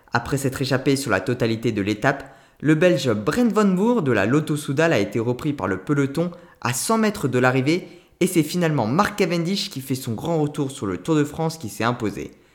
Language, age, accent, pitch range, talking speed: French, 20-39, French, 125-165 Hz, 220 wpm